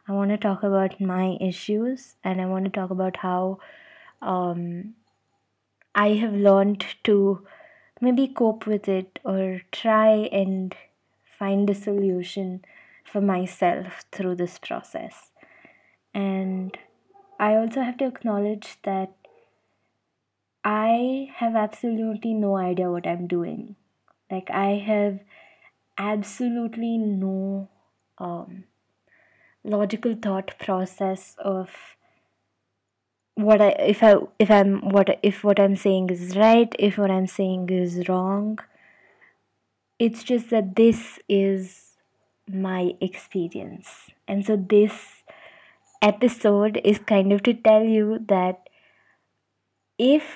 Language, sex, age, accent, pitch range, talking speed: English, female, 20-39, Indian, 190-215 Hz, 115 wpm